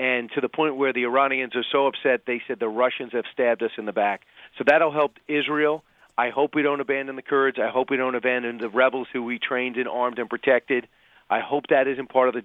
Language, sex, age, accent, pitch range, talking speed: English, male, 40-59, American, 125-150 Hz, 250 wpm